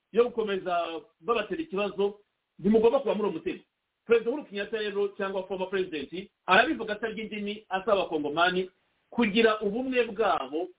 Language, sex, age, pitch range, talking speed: English, male, 50-69, 160-205 Hz, 160 wpm